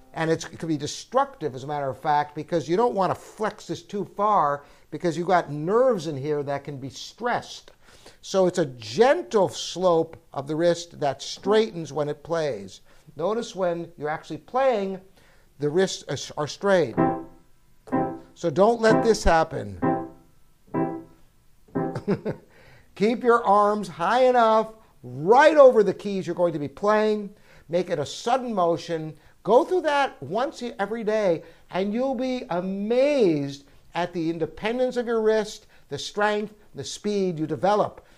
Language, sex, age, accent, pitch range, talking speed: English, male, 60-79, American, 150-220 Hz, 155 wpm